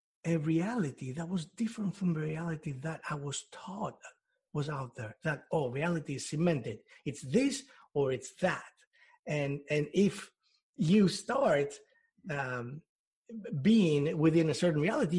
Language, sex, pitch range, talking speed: Spanish, male, 135-180 Hz, 140 wpm